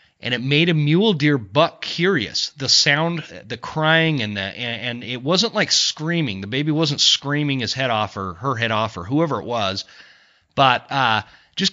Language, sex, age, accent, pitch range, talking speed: English, male, 30-49, American, 115-160 Hz, 195 wpm